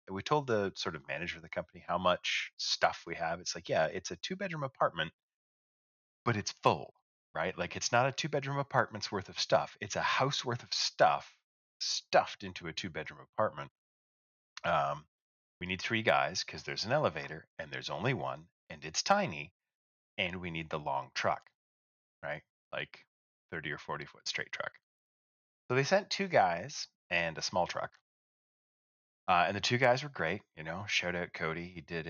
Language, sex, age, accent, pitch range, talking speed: English, male, 30-49, American, 80-125 Hz, 180 wpm